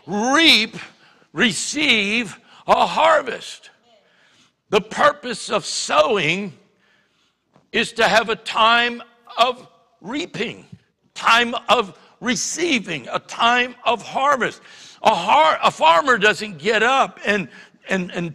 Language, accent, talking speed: English, American, 105 wpm